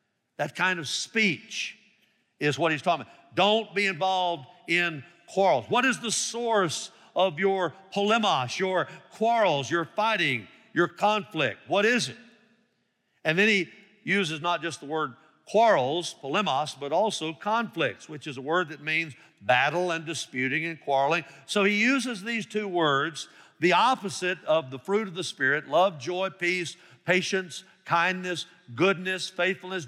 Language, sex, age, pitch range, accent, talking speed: English, male, 50-69, 165-220 Hz, American, 150 wpm